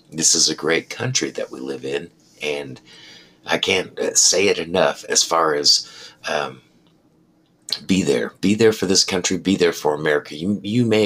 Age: 50-69